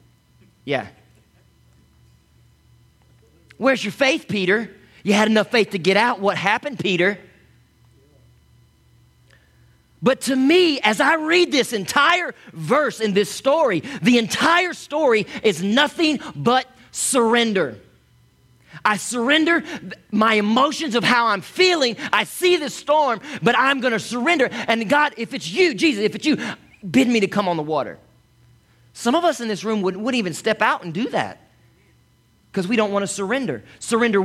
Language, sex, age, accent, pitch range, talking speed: English, male, 40-59, American, 185-270 Hz, 150 wpm